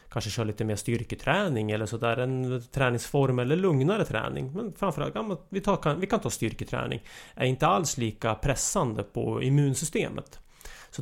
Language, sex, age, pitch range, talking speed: English, male, 30-49, 115-145 Hz, 175 wpm